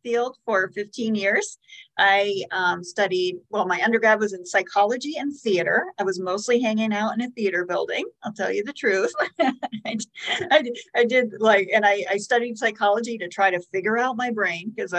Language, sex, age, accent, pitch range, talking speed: English, female, 40-59, American, 190-235 Hz, 190 wpm